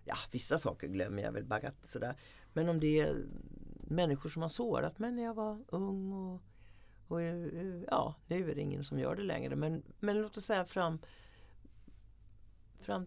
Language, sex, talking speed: Swedish, female, 175 wpm